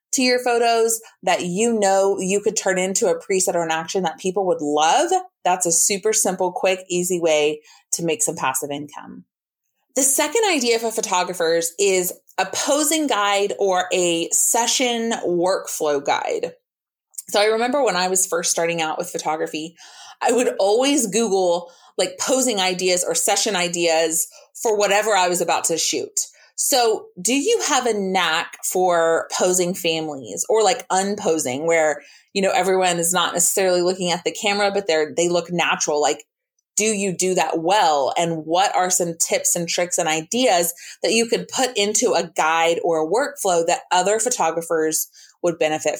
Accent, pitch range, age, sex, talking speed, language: American, 170-230 Hz, 30-49, female, 170 wpm, English